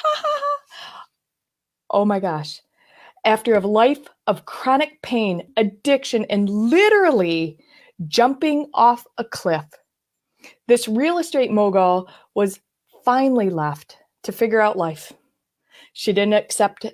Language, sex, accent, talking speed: English, female, American, 105 wpm